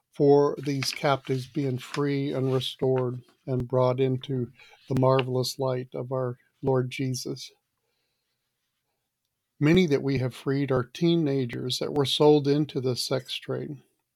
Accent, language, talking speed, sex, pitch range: American, English, 130 wpm, male, 135-150 Hz